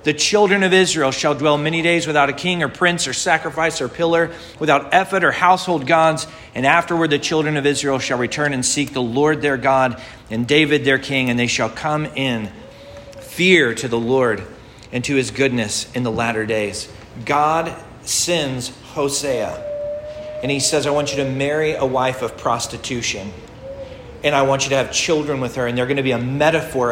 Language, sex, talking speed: English, male, 195 wpm